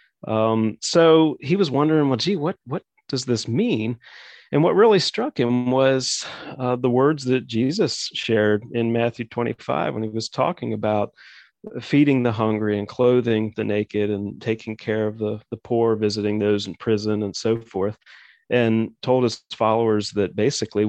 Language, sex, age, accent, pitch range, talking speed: English, male, 40-59, American, 110-125 Hz, 170 wpm